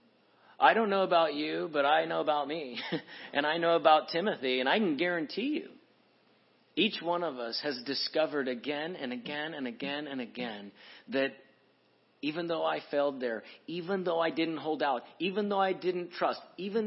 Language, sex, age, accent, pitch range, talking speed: English, male, 40-59, American, 145-175 Hz, 180 wpm